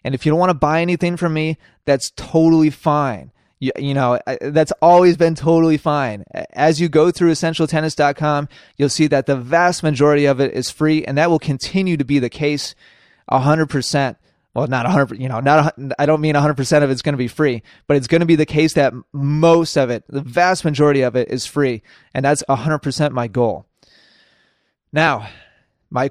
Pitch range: 135-160 Hz